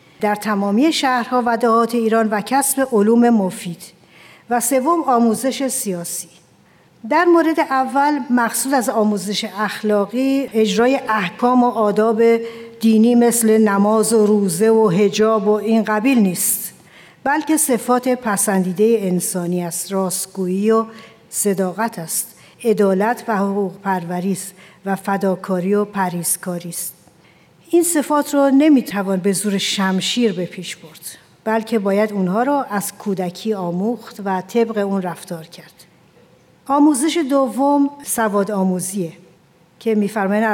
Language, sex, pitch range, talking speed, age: Persian, female, 190-235 Hz, 120 wpm, 60-79